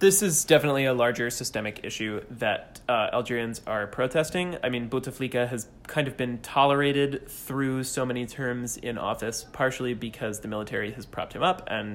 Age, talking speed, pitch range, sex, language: 20-39, 175 wpm, 110-130 Hz, male, English